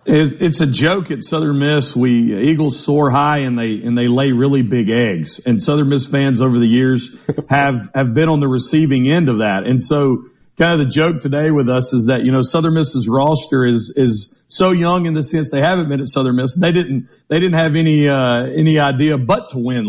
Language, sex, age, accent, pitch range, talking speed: English, male, 50-69, American, 130-165 Hz, 225 wpm